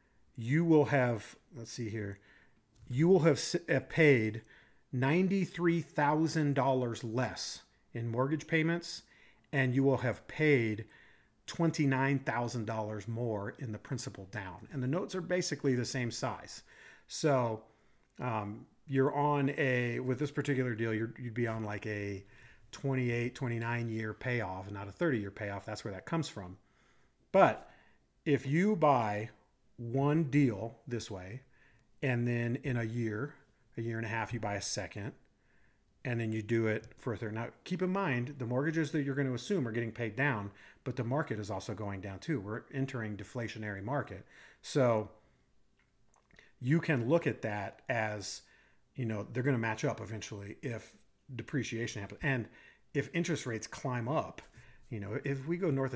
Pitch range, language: 110-140 Hz, English